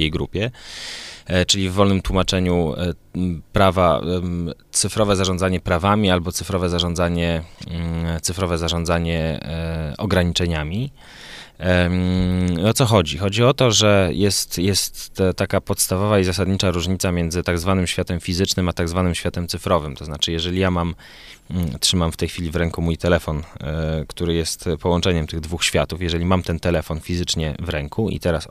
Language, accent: Polish, native